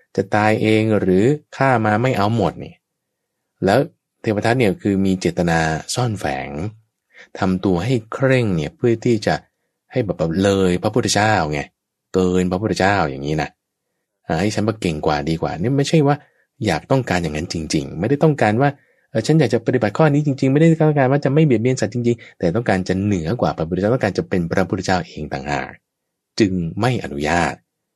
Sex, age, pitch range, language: male, 20-39, 95-130 Hz, English